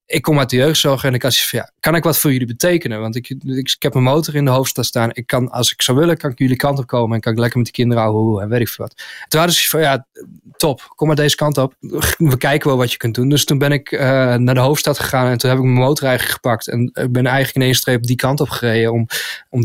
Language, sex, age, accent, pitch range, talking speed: Dutch, male, 20-39, Dutch, 125-140 Hz, 300 wpm